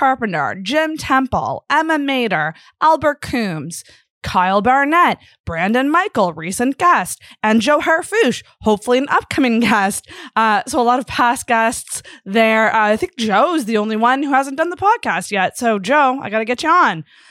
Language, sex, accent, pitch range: English, female, American, 190-260 Hz